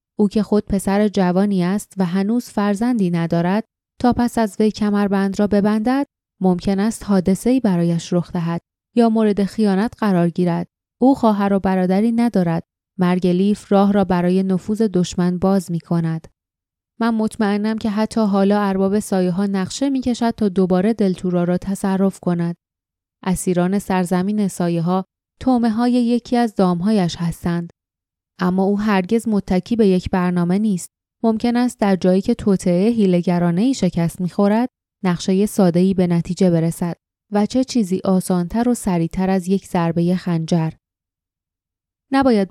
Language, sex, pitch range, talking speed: Persian, female, 180-210 Hz, 145 wpm